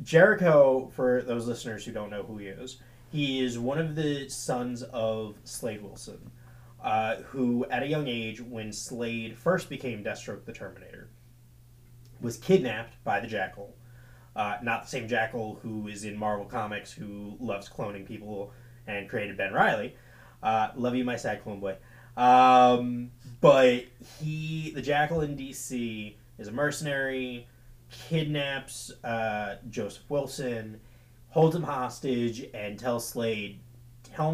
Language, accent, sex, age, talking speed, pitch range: English, American, male, 20-39, 145 wpm, 110-130 Hz